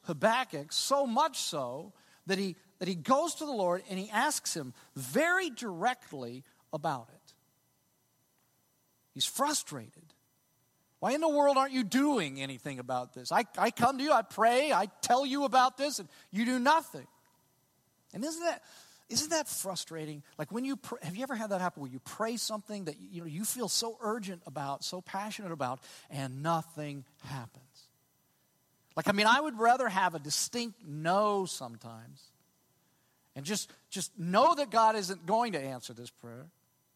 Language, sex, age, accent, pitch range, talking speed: English, male, 40-59, American, 145-235 Hz, 170 wpm